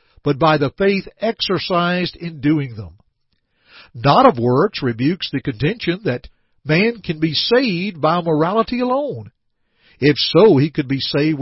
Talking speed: 145 wpm